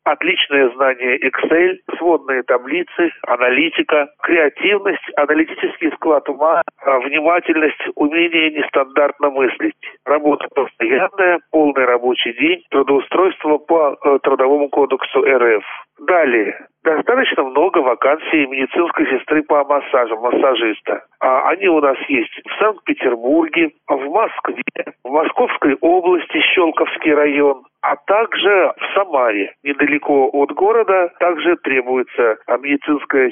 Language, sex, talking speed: Russian, male, 100 wpm